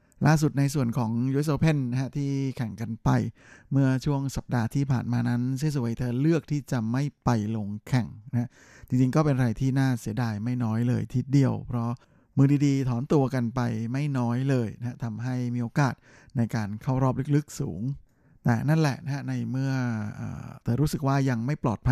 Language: Thai